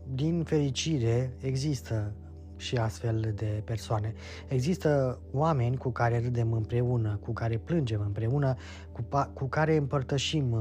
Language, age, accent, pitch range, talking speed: Romanian, 20-39, native, 115-140 Hz, 120 wpm